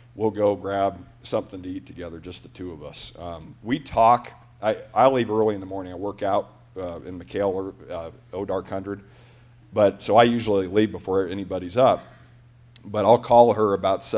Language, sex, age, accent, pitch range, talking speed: English, male, 40-59, American, 95-115 Hz, 190 wpm